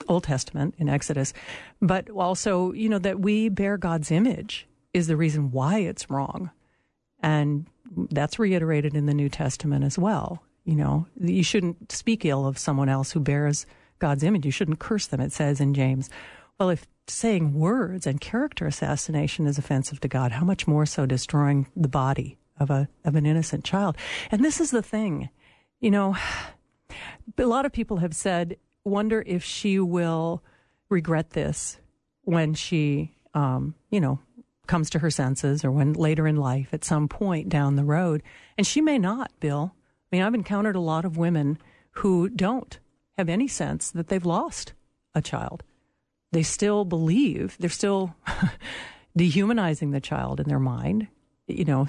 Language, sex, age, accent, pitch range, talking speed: English, female, 50-69, American, 145-195 Hz, 170 wpm